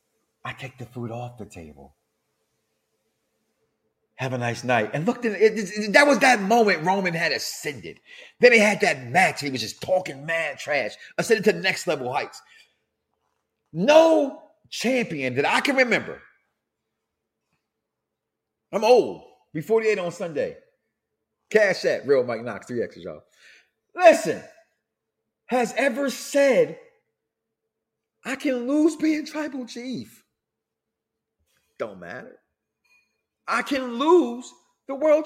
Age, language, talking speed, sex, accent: 30-49, English, 135 wpm, male, American